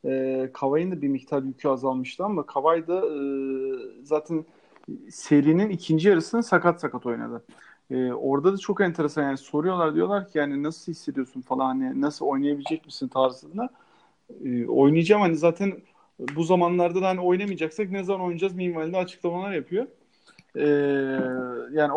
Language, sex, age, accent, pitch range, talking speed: Turkish, male, 40-59, native, 145-205 Hz, 130 wpm